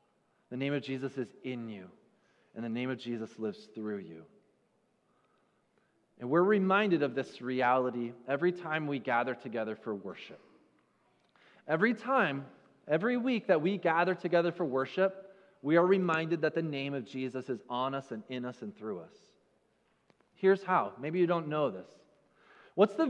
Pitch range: 135-225 Hz